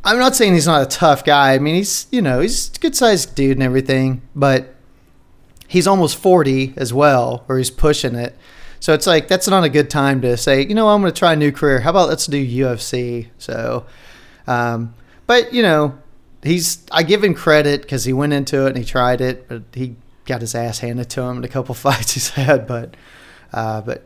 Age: 30-49